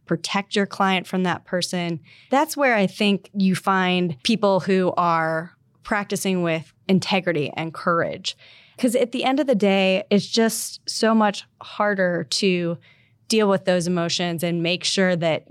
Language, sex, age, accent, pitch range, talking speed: English, female, 10-29, American, 175-225 Hz, 160 wpm